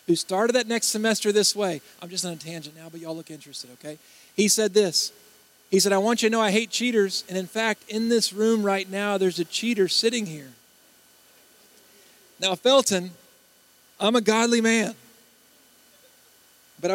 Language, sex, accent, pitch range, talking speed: English, male, American, 150-200 Hz, 180 wpm